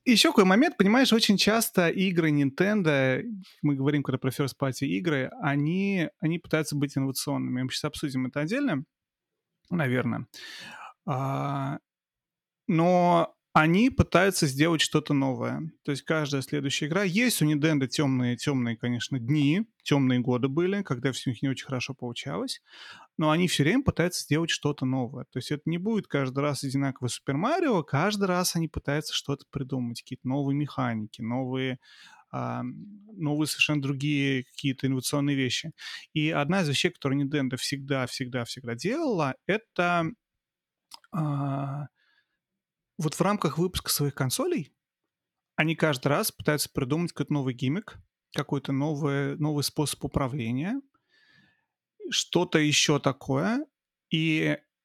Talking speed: 135 wpm